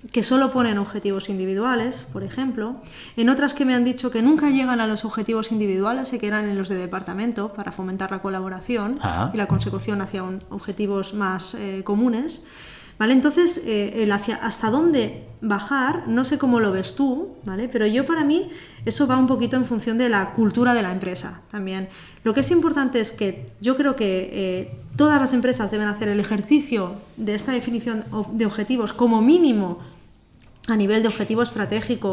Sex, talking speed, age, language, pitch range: female, 190 wpm, 20-39, Spanish, 200-250 Hz